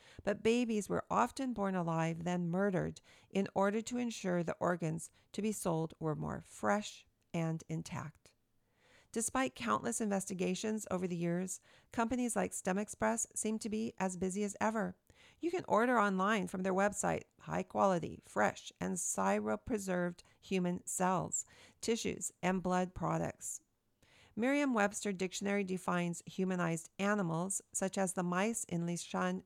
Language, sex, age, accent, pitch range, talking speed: English, female, 40-59, American, 175-215 Hz, 135 wpm